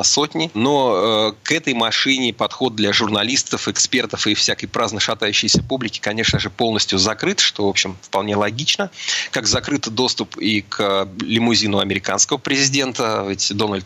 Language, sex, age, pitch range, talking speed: Russian, male, 30-49, 100-115 Hz, 145 wpm